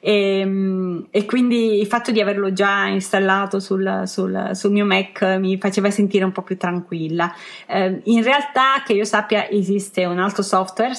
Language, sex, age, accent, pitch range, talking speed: Italian, female, 30-49, native, 180-210 Hz, 165 wpm